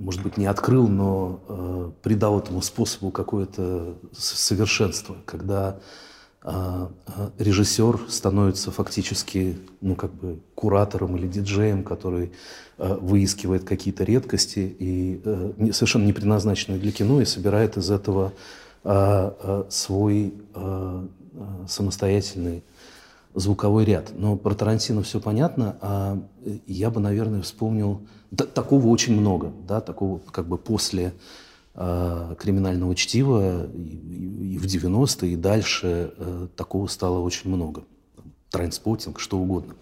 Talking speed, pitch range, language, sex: 120 wpm, 95-110 Hz, Russian, male